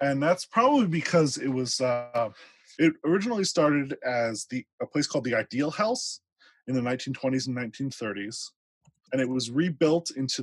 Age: 20-39